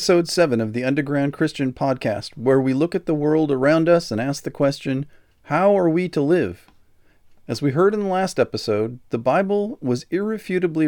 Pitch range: 115-155 Hz